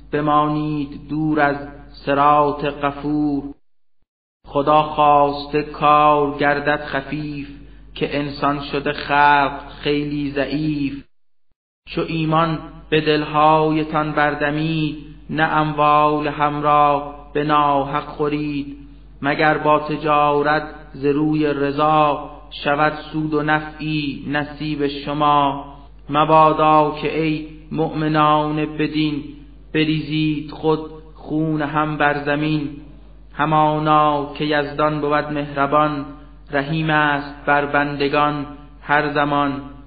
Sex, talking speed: male, 90 wpm